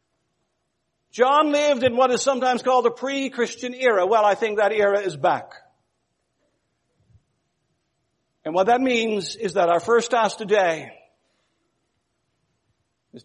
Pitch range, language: 220-290 Hz, English